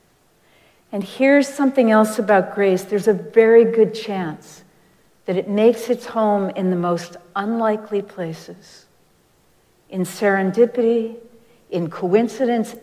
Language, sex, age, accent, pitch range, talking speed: English, female, 50-69, American, 175-225 Hz, 115 wpm